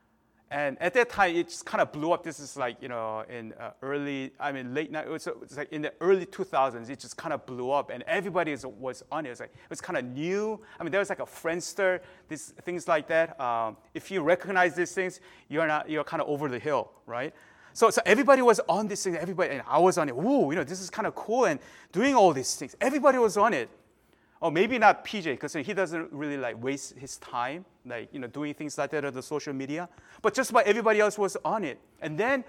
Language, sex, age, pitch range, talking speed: English, male, 30-49, 140-190 Hz, 250 wpm